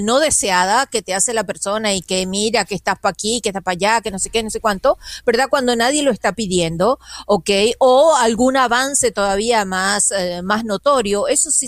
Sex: female